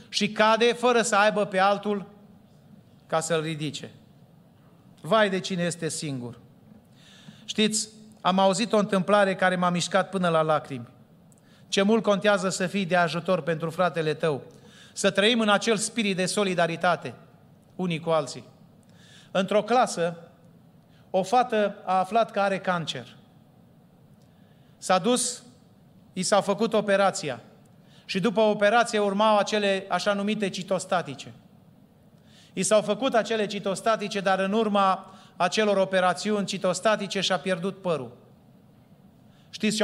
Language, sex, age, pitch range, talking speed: Romanian, male, 30-49, 175-205 Hz, 130 wpm